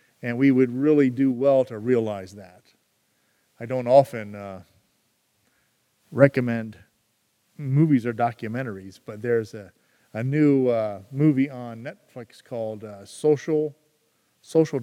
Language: English